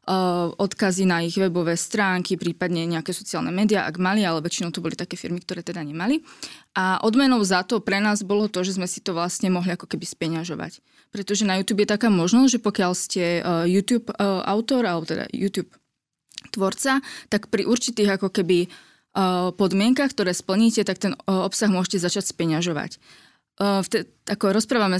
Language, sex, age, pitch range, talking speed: Slovak, female, 20-39, 175-210 Hz, 165 wpm